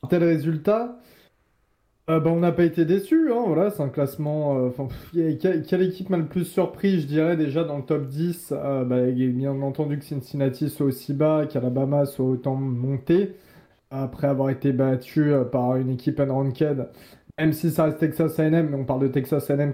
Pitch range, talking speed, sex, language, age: 135-165 Hz, 195 wpm, male, French, 20-39